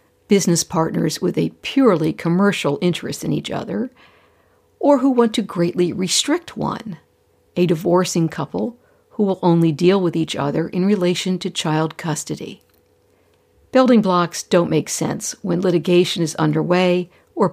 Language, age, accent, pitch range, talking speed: English, 60-79, American, 160-210 Hz, 145 wpm